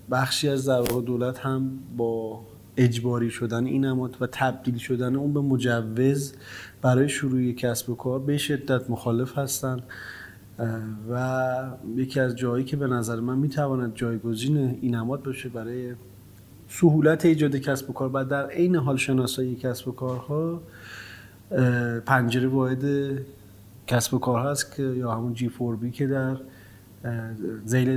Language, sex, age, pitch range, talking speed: Persian, male, 30-49, 115-135 Hz, 145 wpm